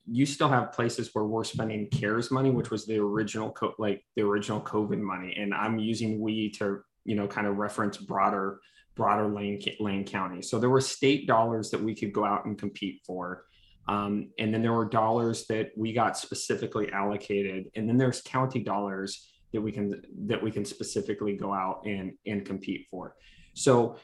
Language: English